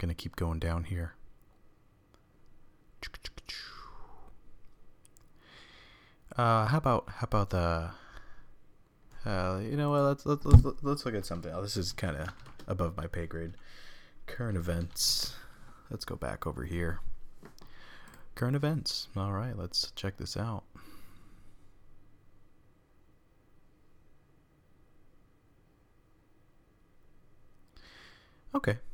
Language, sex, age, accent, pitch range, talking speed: English, male, 30-49, American, 85-105 Hz, 100 wpm